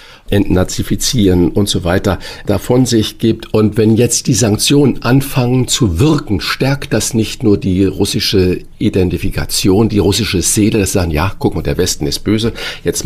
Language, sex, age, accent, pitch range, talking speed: German, male, 50-69, German, 95-115 Hz, 165 wpm